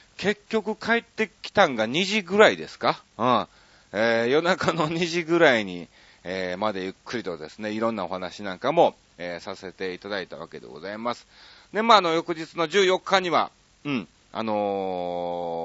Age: 40-59